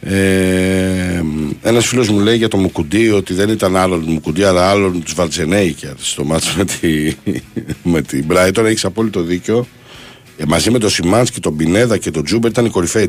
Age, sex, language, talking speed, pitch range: 60-79, male, Greek, 185 wpm, 85-115 Hz